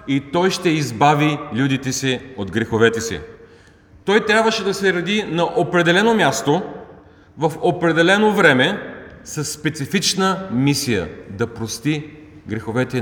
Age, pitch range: 40-59, 110-170 Hz